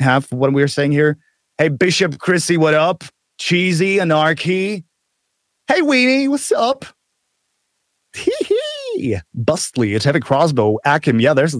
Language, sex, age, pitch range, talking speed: English, male, 30-49, 110-155 Hz, 140 wpm